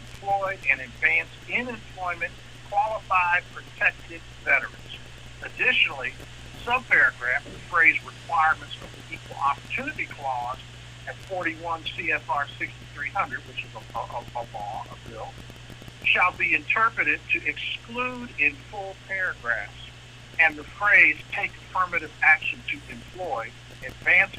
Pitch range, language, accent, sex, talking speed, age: 120-165 Hz, English, American, male, 115 wpm, 50-69